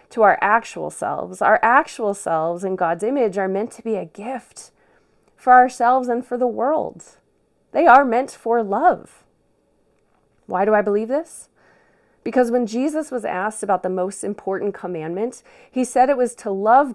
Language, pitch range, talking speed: English, 190-235 Hz, 170 wpm